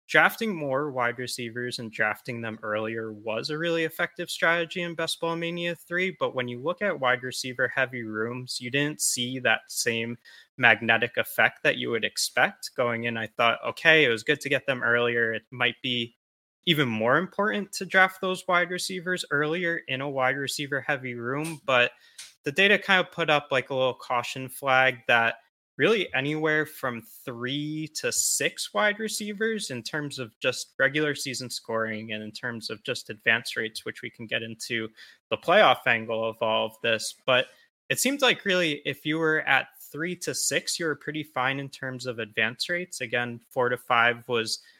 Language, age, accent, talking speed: English, 20-39, American, 190 wpm